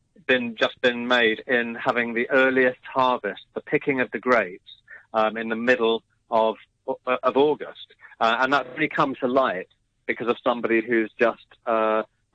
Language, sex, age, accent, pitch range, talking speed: English, male, 30-49, British, 110-125 Hz, 165 wpm